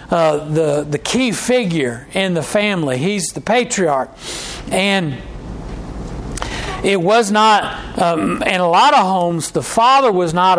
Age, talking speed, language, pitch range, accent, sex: 50-69, 140 wpm, English, 165-215 Hz, American, male